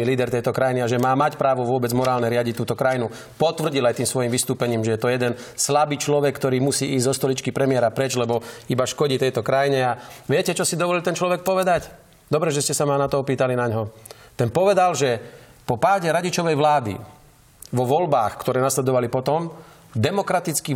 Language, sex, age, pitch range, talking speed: Slovak, male, 40-59, 130-170 Hz, 195 wpm